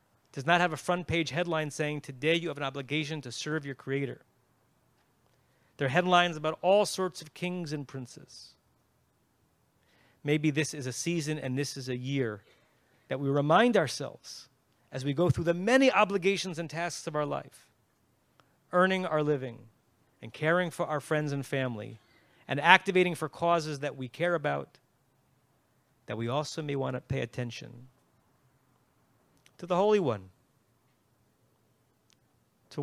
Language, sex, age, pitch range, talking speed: English, male, 30-49, 120-155 Hz, 155 wpm